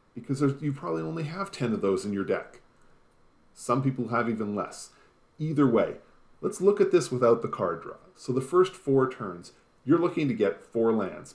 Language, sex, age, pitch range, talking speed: English, male, 40-59, 110-160 Hz, 195 wpm